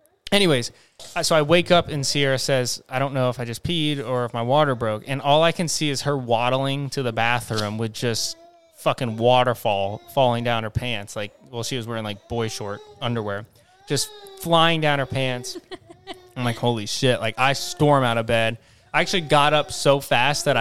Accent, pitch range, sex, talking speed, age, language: American, 115-140 Hz, male, 205 wpm, 20-39, English